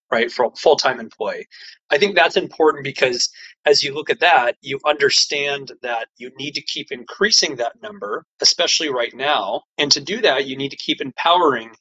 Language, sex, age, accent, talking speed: English, male, 30-49, American, 190 wpm